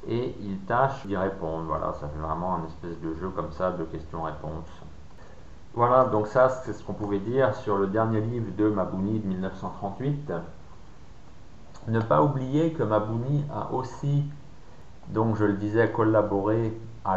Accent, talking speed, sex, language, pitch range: French, 160 wpm, male, French, 95-120 Hz